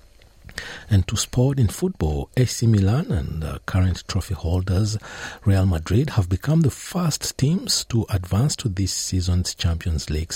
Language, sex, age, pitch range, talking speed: English, male, 60-79, 80-115 Hz, 150 wpm